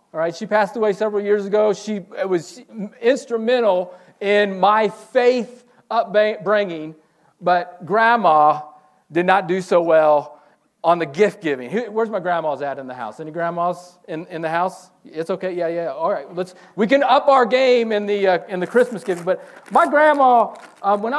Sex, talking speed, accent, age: male, 180 wpm, American, 40-59